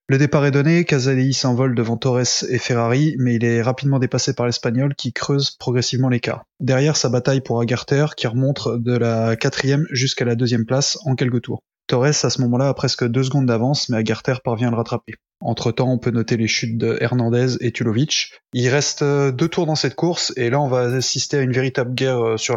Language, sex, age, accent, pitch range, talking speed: French, male, 20-39, French, 120-140 Hz, 215 wpm